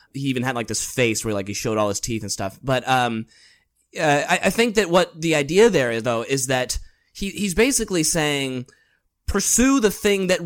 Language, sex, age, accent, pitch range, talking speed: English, male, 20-39, American, 115-150 Hz, 210 wpm